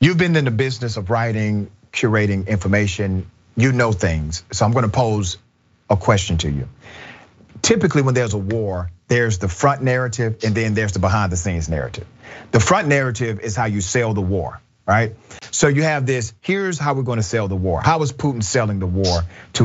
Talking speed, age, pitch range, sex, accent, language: 205 wpm, 40-59, 105-140 Hz, male, American, English